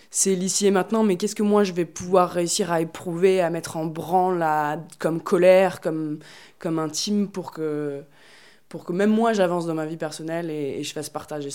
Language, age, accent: French, 20-39, French